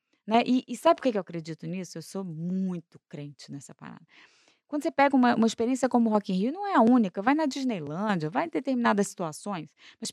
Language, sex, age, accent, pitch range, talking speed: Portuguese, female, 20-39, Brazilian, 185-250 Hz, 225 wpm